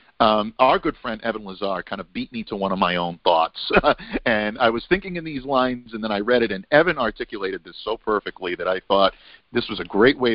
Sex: male